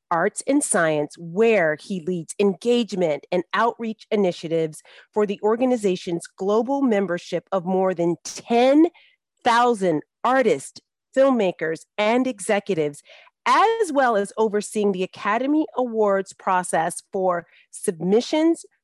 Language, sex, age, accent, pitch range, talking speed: English, female, 40-59, American, 180-255 Hz, 105 wpm